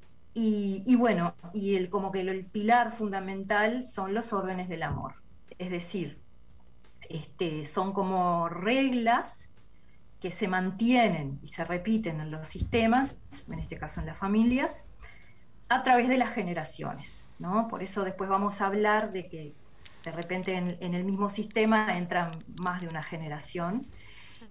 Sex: female